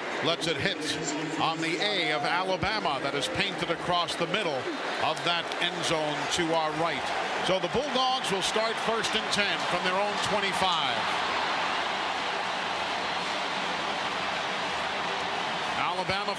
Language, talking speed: English, 130 wpm